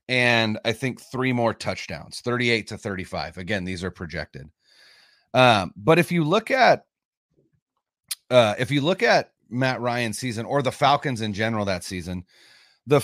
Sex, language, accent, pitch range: male, English, American, 105-140 Hz